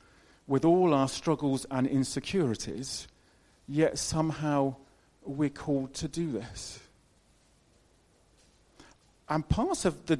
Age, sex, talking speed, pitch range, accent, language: 40-59, male, 100 wpm, 120-175 Hz, British, English